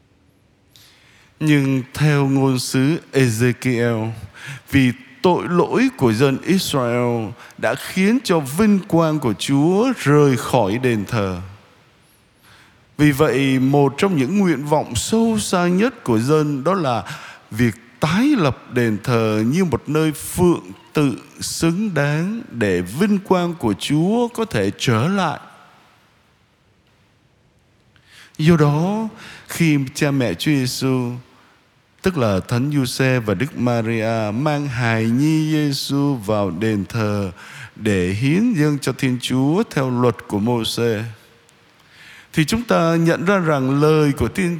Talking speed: 130 wpm